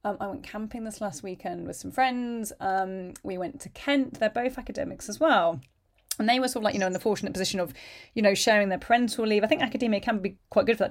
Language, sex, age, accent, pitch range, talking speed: English, female, 30-49, British, 190-235 Hz, 265 wpm